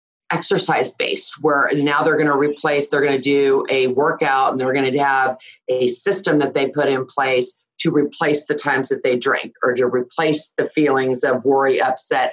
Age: 40-59